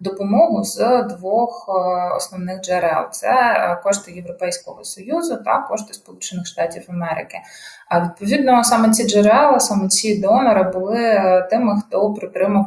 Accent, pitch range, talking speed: native, 180-220 Hz, 120 wpm